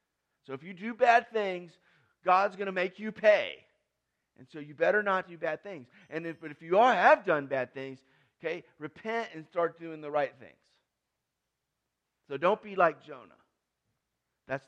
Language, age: English, 40-59